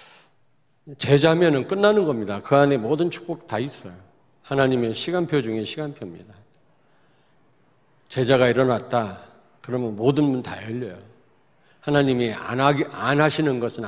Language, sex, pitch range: Korean, male, 120-150 Hz